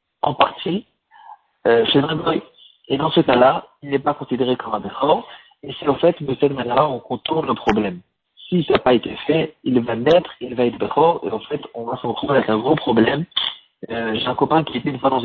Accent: French